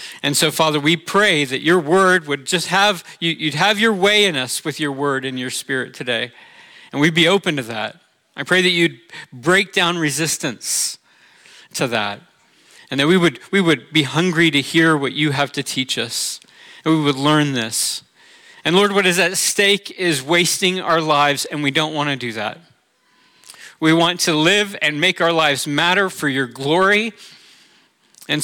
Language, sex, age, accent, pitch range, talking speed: English, male, 40-59, American, 145-175 Hz, 190 wpm